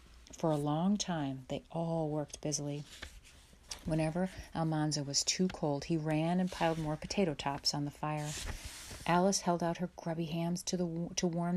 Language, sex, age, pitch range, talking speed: English, female, 40-59, 145-185 Hz, 170 wpm